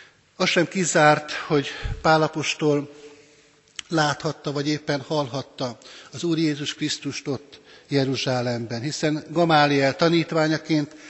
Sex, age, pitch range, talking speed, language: male, 60-79, 135-160 Hz, 95 wpm, Hungarian